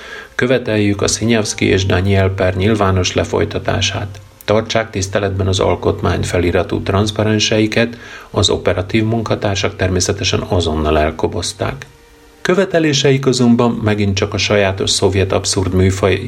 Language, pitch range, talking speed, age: Hungarian, 95-110 Hz, 105 wpm, 40-59